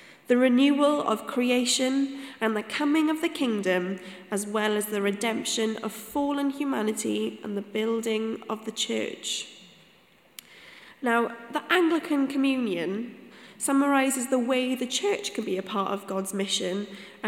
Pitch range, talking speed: 210-275 Hz, 140 wpm